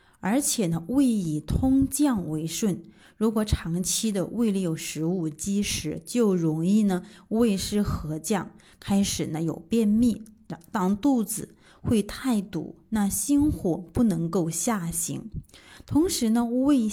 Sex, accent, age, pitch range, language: female, native, 20-39, 170-225 Hz, Chinese